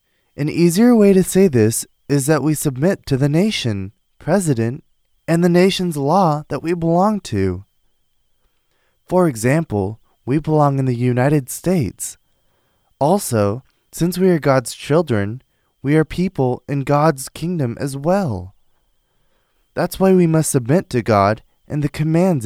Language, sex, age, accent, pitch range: Korean, male, 20-39, American, 115-170 Hz